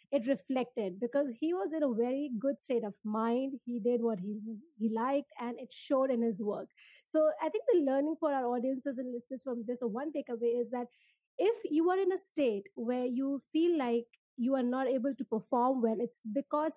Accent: Indian